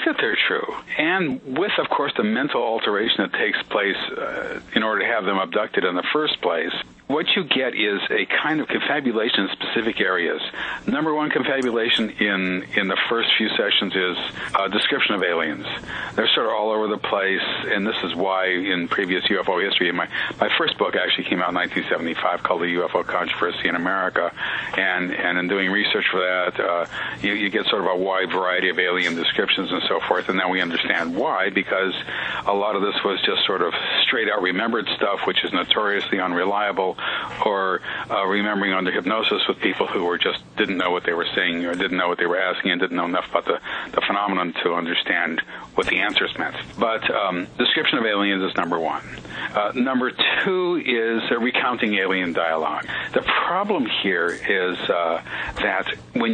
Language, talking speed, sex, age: English, 195 wpm, male, 50-69